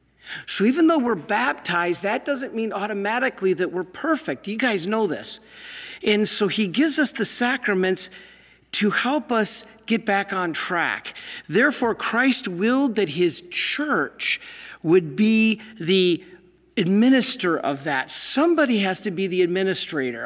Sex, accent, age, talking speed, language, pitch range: male, American, 50-69, 140 wpm, English, 170-225 Hz